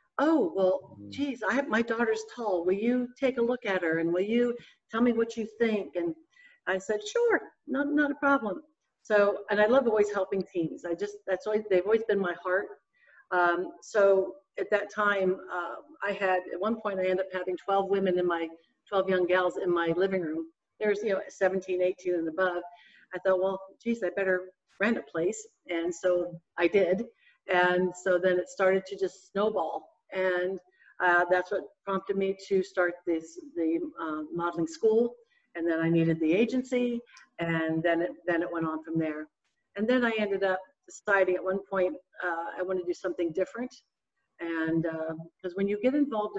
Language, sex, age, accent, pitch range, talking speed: English, female, 50-69, American, 175-215 Hz, 195 wpm